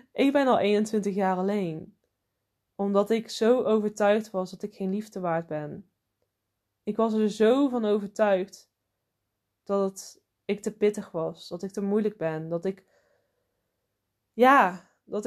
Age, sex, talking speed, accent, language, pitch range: 20-39, female, 145 wpm, Dutch, Dutch, 175-225 Hz